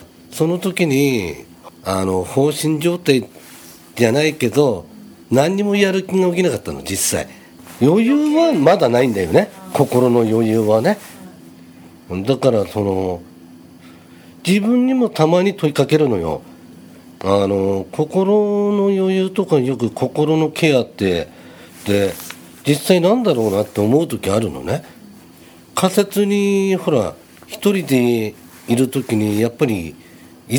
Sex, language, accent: male, Japanese, native